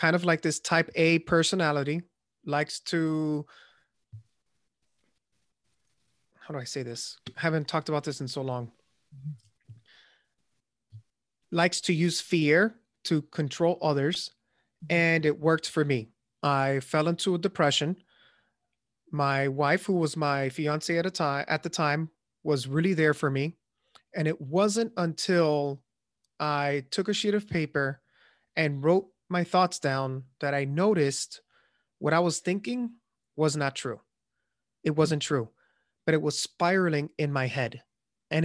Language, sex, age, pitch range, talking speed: English, male, 30-49, 140-175 Hz, 140 wpm